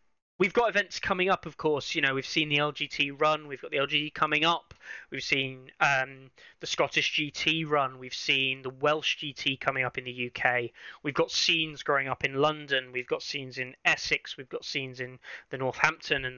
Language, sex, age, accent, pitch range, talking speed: English, male, 20-39, British, 130-150 Hz, 205 wpm